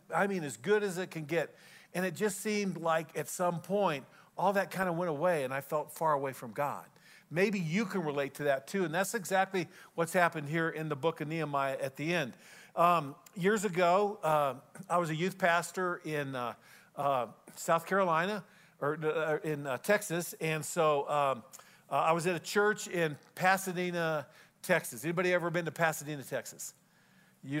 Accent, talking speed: American, 190 wpm